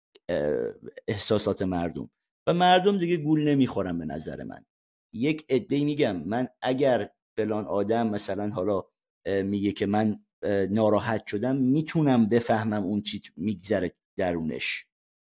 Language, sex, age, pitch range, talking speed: Persian, male, 50-69, 100-140 Hz, 120 wpm